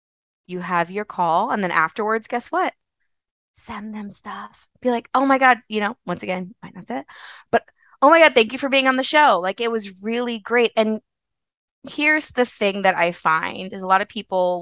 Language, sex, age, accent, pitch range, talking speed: English, female, 20-39, American, 190-240 Hz, 220 wpm